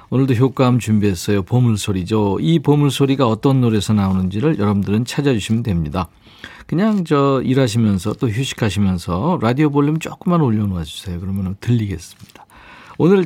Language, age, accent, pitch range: Korean, 50-69, native, 100-145 Hz